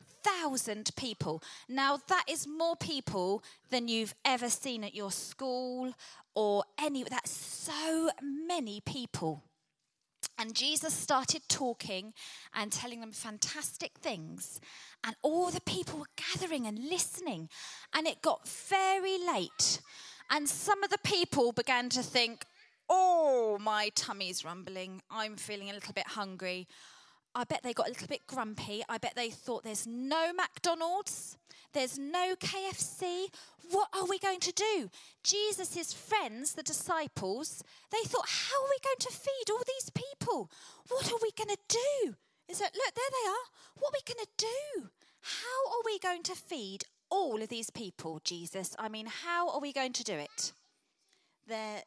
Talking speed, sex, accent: 160 wpm, female, British